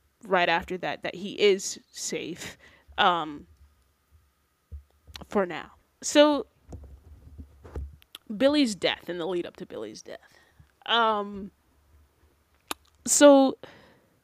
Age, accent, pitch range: 10-29, American, 165-210 Hz